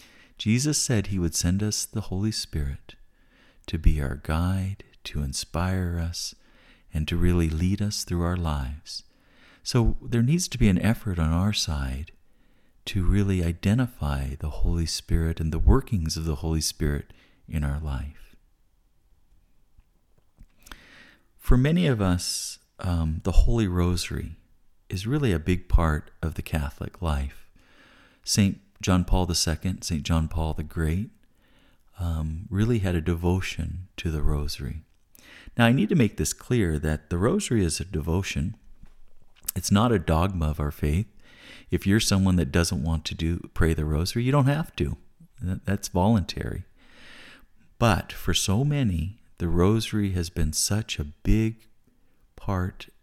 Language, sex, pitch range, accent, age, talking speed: English, male, 80-105 Hz, American, 50-69, 150 wpm